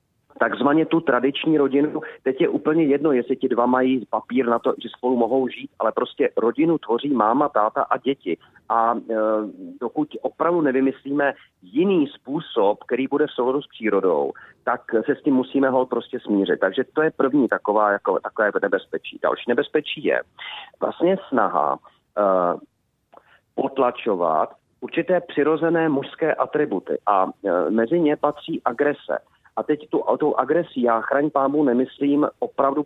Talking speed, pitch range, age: 150 wpm, 130-160 Hz, 40-59